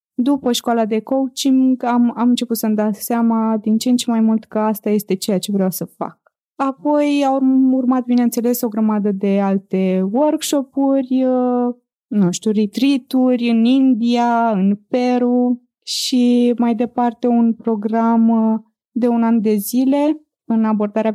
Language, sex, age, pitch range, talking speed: Romanian, female, 20-39, 210-245 Hz, 150 wpm